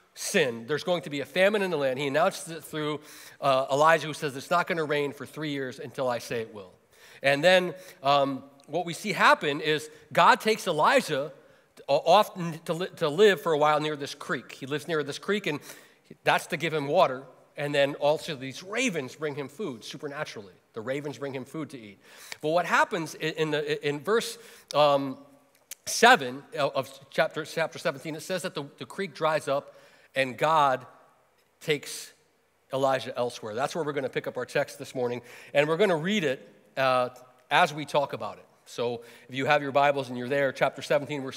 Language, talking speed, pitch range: English, 205 wpm, 140-175 Hz